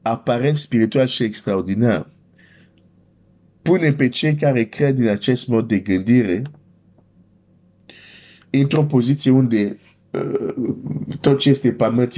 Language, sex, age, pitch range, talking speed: Romanian, male, 50-69, 100-130 Hz, 110 wpm